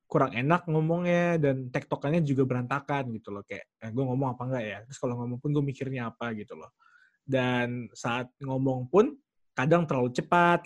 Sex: male